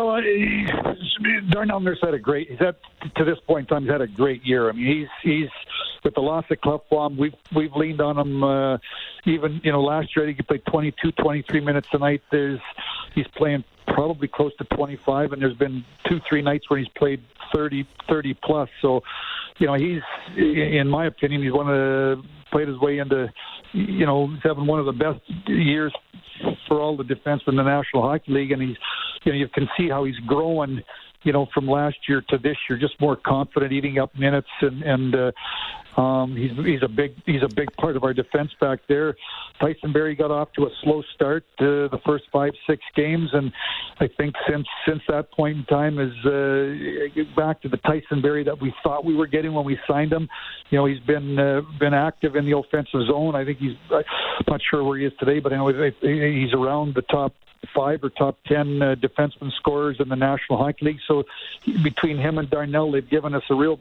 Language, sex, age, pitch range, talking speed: English, male, 60-79, 140-155 Hz, 215 wpm